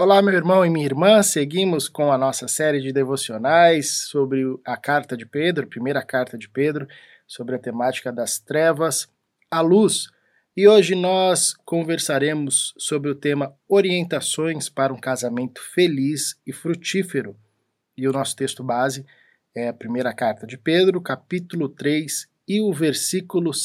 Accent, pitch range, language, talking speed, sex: Brazilian, 130-170 Hz, Portuguese, 150 wpm, male